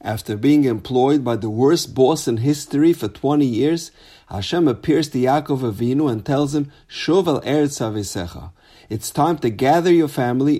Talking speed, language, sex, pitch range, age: 165 wpm, English, male, 105-145 Hz, 50-69